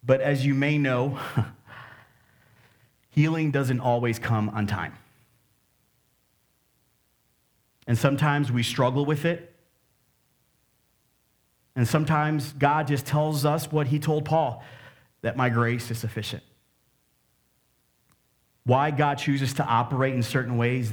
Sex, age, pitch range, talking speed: male, 30-49, 125-155 Hz, 115 wpm